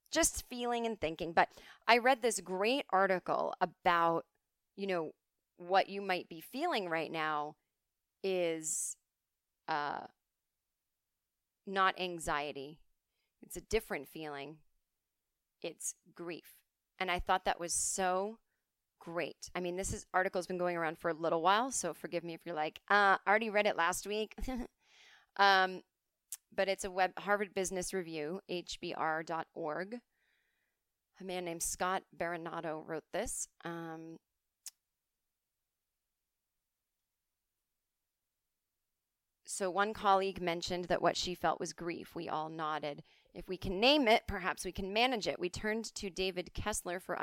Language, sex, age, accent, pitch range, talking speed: English, female, 30-49, American, 165-195 Hz, 135 wpm